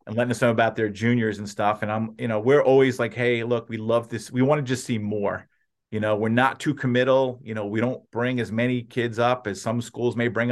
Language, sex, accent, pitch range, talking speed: English, male, American, 110-140 Hz, 270 wpm